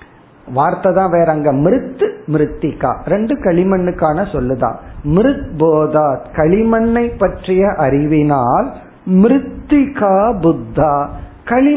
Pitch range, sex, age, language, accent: 145-190 Hz, male, 50-69, Tamil, native